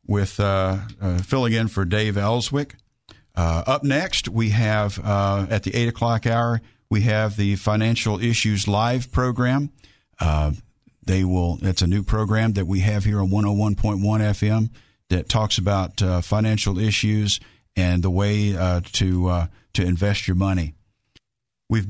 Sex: male